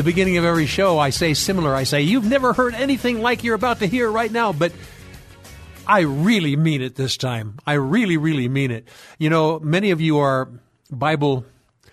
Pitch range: 125-160 Hz